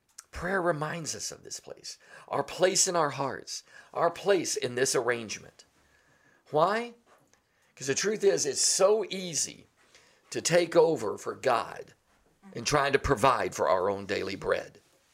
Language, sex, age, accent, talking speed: English, male, 50-69, American, 150 wpm